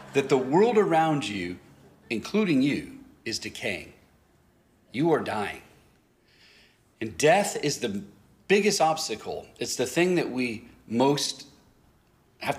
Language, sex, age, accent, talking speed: English, male, 40-59, American, 120 wpm